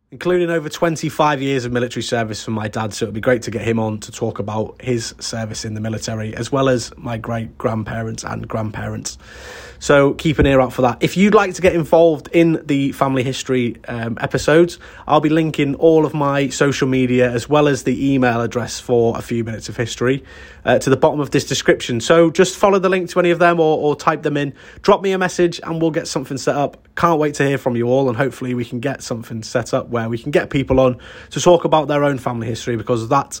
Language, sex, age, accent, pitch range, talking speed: English, male, 30-49, British, 115-150 Hz, 240 wpm